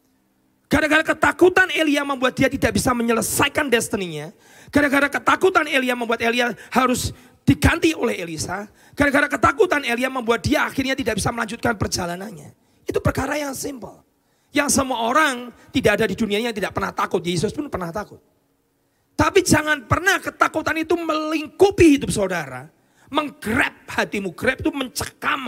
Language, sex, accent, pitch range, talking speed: Indonesian, male, native, 210-295 Hz, 145 wpm